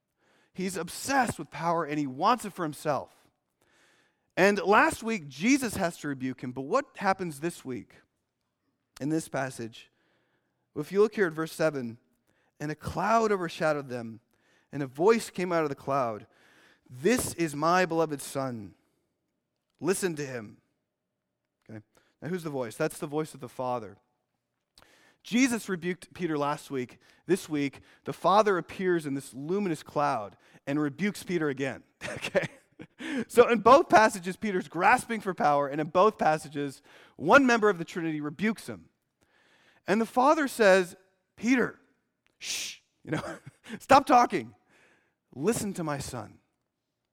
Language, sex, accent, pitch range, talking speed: English, male, American, 140-200 Hz, 150 wpm